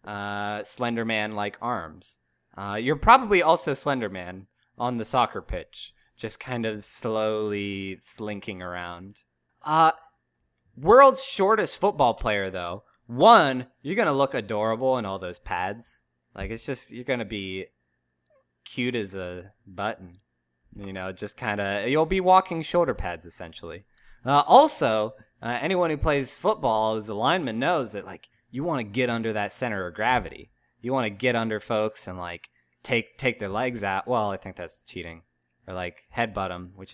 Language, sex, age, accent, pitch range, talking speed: English, male, 20-39, American, 95-125 Hz, 165 wpm